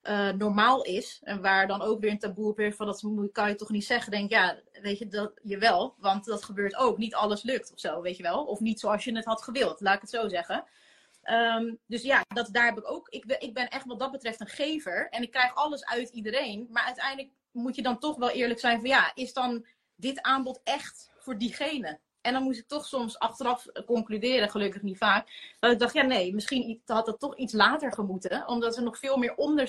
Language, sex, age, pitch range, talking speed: Dutch, female, 30-49, 210-255 Hz, 240 wpm